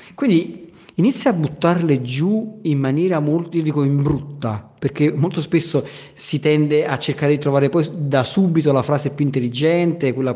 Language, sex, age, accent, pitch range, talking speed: Italian, male, 40-59, native, 135-165 Hz, 160 wpm